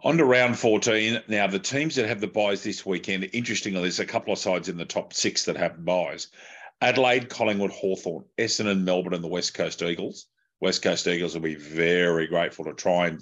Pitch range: 90-120 Hz